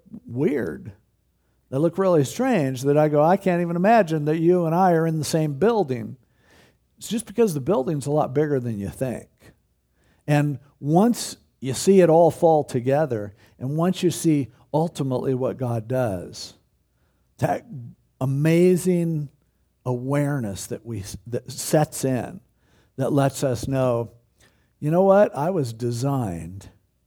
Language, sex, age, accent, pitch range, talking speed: English, male, 50-69, American, 120-175 Hz, 145 wpm